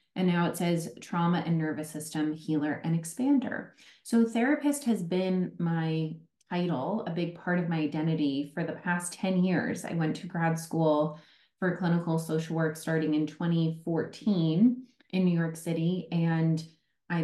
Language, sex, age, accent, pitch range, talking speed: English, female, 30-49, American, 160-190 Hz, 160 wpm